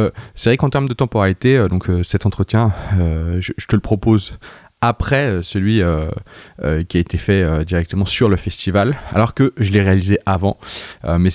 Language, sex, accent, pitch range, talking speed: French, male, French, 85-110 Hz, 190 wpm